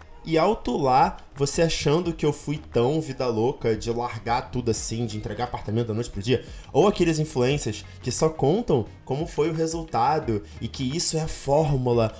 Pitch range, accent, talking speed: 125-165 Hz, Brazilian, 185 wpm